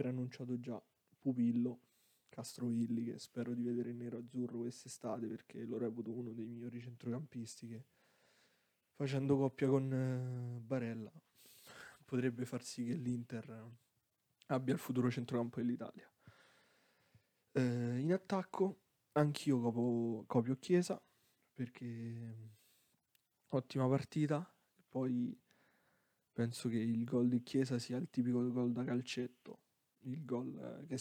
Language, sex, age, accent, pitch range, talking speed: Italian, male, 20-39, native, 120-135 Hz, 110 wpm